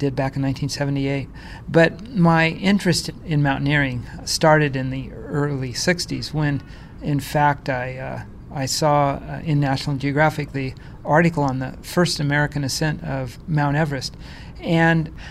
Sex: male